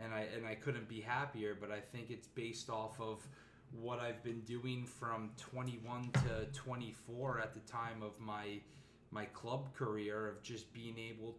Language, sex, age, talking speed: English, male, 20-39, 180 wpm